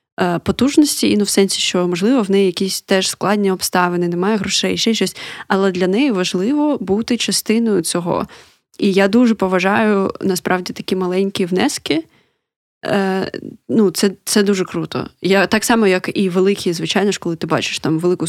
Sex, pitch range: female, 185-220 Hz